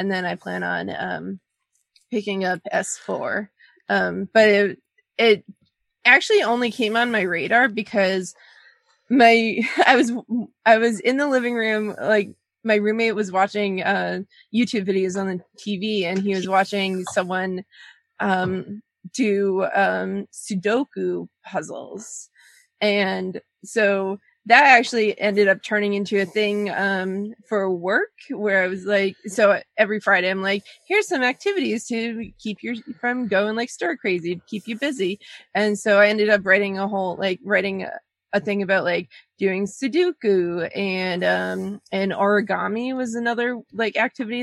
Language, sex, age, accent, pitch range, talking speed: English, female, 20-39, American, 195-235 Hz, 150 wpm